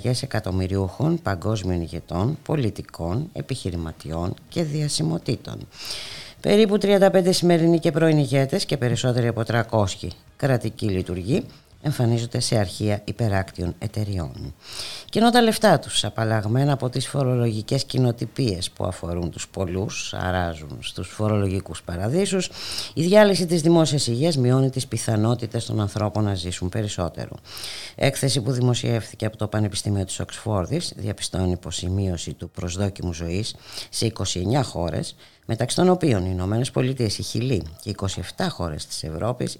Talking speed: 125 wpm